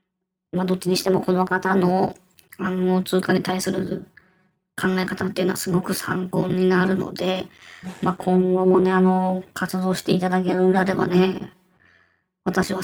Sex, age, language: male, 20-39, Japanese